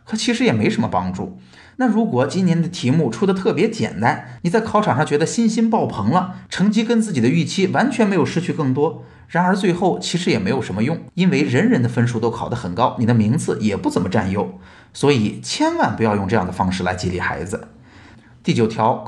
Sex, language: male, Chinese